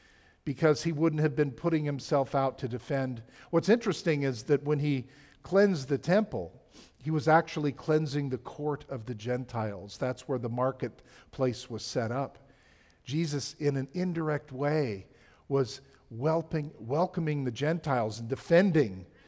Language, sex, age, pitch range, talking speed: English, male, 50-69, 125-165 Hz, 145 wpm